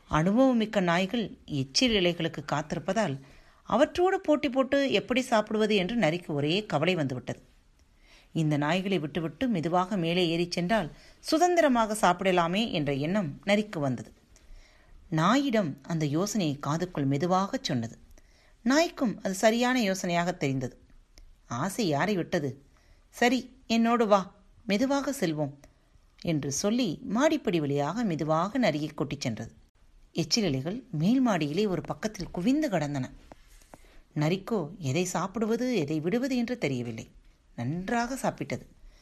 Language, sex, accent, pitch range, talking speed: Tamil, female, native, 150-230 Hz, 110 wpm